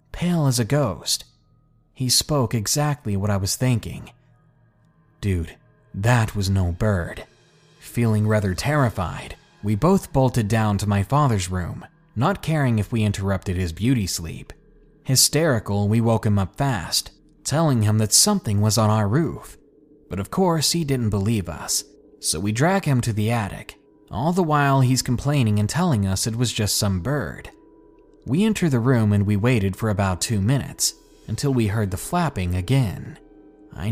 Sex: male